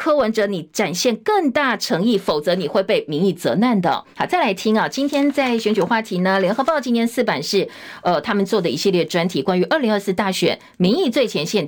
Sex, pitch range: female, 190-255 Hz